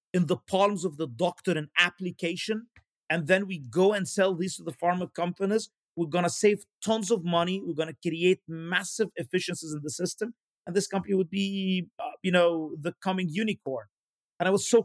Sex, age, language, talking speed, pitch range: male, 40-59, English, 200 wpm, 155-185 Hz